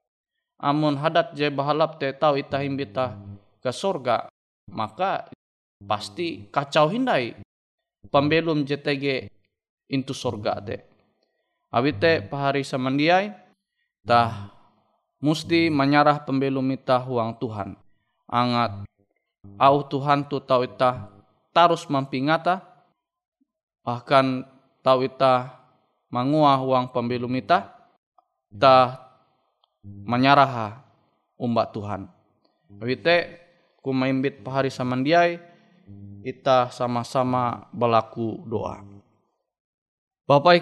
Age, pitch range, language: 20-39, 115-145 Hz, Indonesian